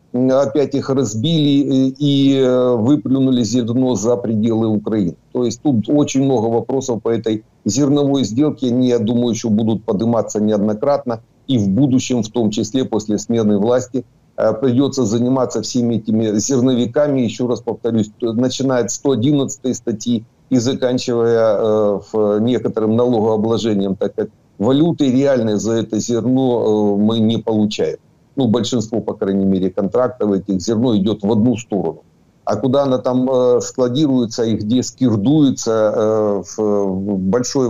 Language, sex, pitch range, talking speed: Ukrainian, male, 110-130 Hz, 130 wpm